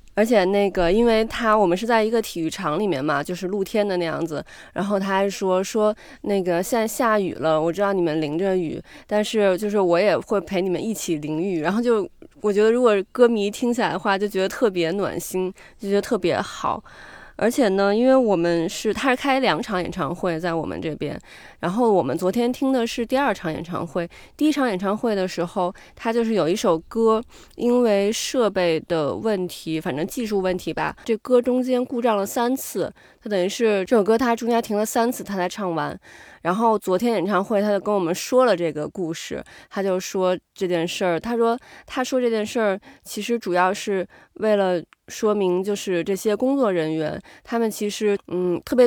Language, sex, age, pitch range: Chinese, female, 20-39, 180-225 Hz